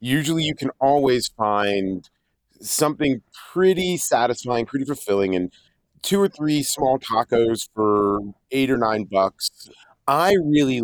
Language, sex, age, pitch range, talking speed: English, male, 40-59, 110-145 Hz, 125 wpm